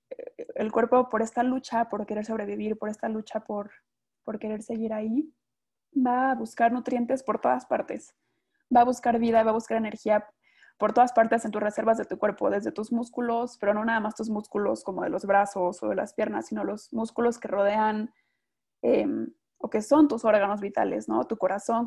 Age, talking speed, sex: 20-39, 200 wpm, female